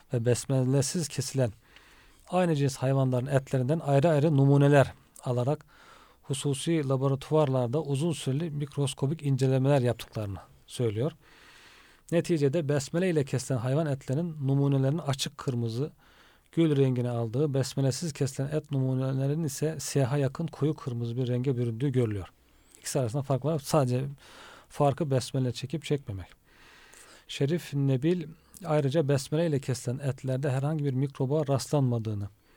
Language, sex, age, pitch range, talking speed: Turkish, male, 40-59, 125-150 Hz, 120 wpm